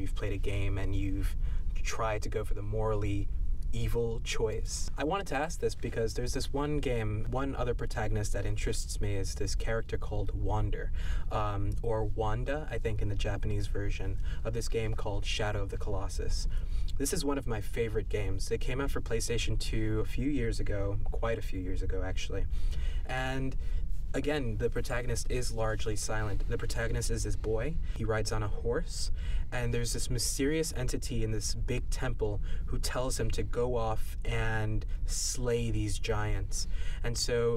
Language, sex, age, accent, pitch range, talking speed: English, male, 20-39, American, 95-120 Hz, 180 wpm